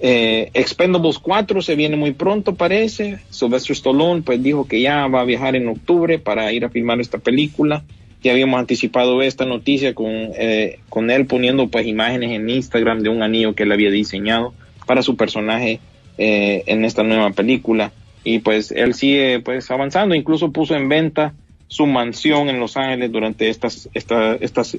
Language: Spanish